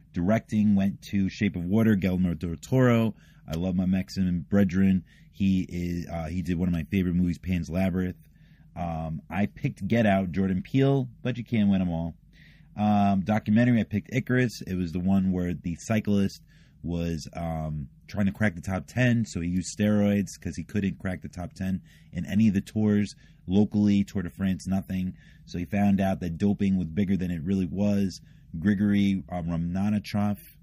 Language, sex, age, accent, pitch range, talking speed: English, male, 30-49, American, 90-105 Hz, 185 wpm